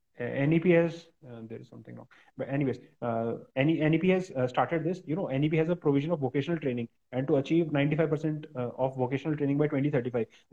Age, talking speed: 30-49, 195 wpm